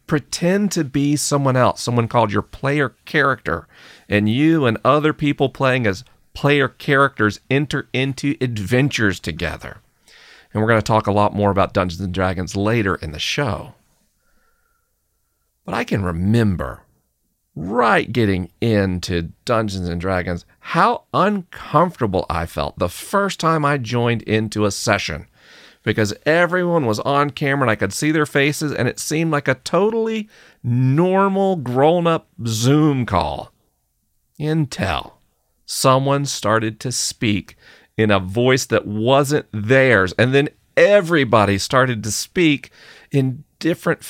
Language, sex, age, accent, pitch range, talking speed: English, male, 40-59, American, 105-150 Hz, 135 wpm